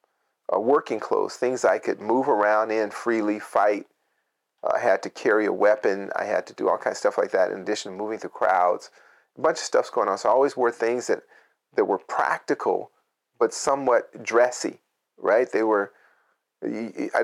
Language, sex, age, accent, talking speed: English, male, 40-59, American, 195 wpm